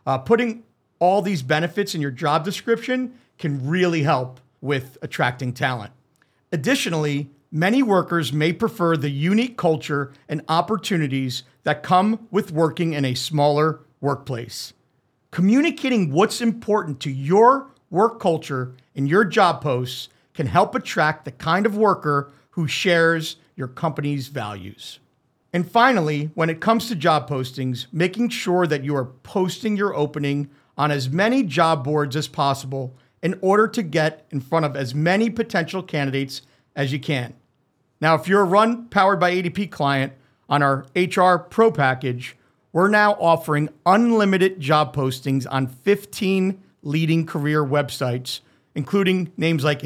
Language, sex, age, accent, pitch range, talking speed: English, male, 50-69, American, 140-185 Hz, 145 wpm